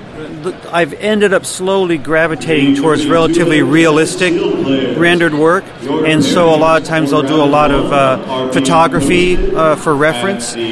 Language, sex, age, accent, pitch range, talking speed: English, male, 40-59, American, 135-165 Hz, 145 wpm